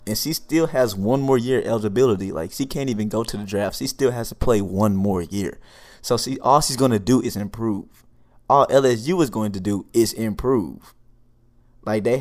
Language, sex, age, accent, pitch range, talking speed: English, male, 20-39, American, 100-120 Hz, 210 wpm